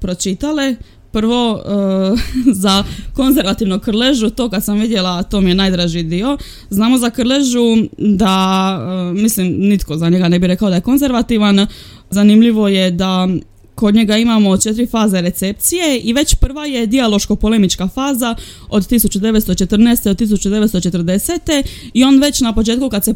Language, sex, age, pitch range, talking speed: Croatian, female, 20-39, 195-245 Hz, 145 wpm